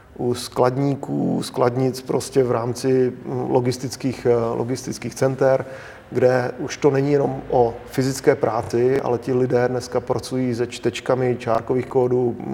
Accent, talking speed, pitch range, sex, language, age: native, 125 wpm, 120-130 Hz, male, Czech, 40-59